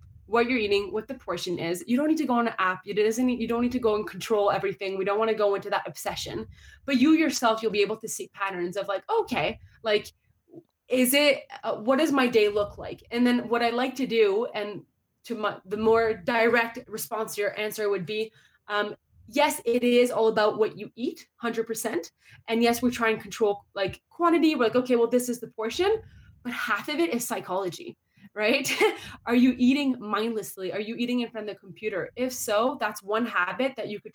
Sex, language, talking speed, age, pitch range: female, English, 225 wpm, 20-39, 205-245 Hz